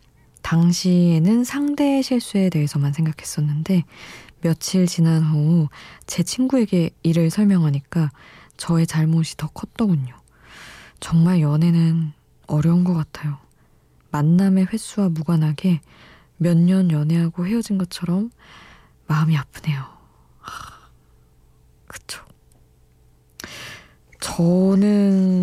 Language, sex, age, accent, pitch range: Korean, female, 20-39, native, 150-180 Hz